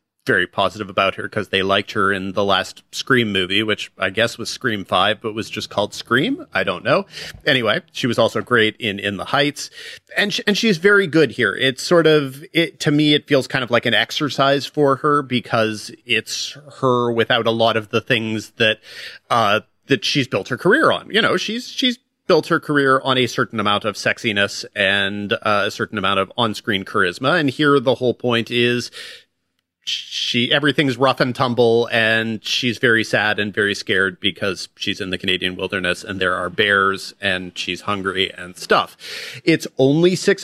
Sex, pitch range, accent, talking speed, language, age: male, 105-145 Hz, American, 195 wpm, English, 40-59